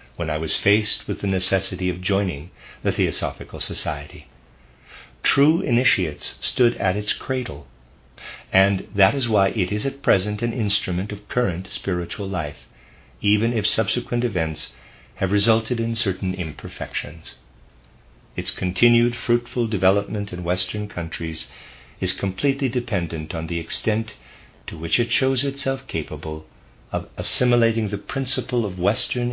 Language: English